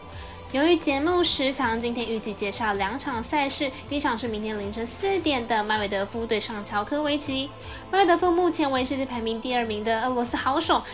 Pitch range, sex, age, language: 255-335 Hz, female, 20-39, Chinese